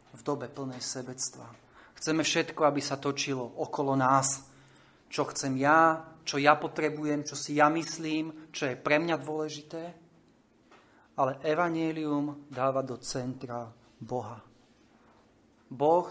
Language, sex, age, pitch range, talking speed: Slovak, male, 30-49, 130-155 Hz, 125 wpm